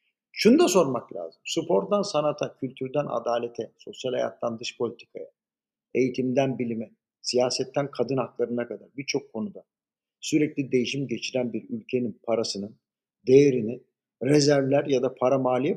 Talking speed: 120 wpm